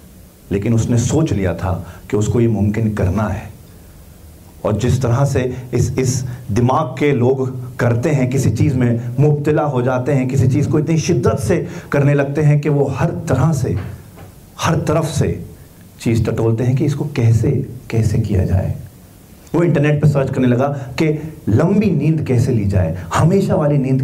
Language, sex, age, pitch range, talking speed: Hindi, male, 40-59, 105-155 Hz, 175 wpm